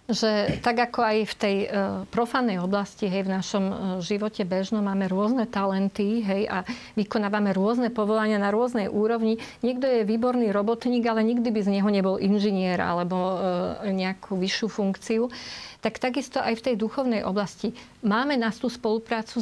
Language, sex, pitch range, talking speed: Slovak, female, 210-250 Hz, 165 wpm